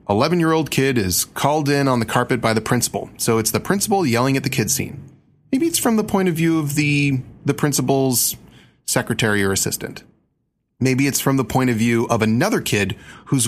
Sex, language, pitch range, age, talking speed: male, English, 115-165 Hz, 30-49, 200 wpm